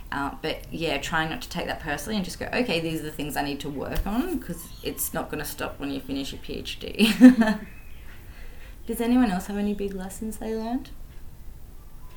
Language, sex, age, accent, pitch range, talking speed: English, female, 20-39, Australian, 145-200 Hz, 205 wpm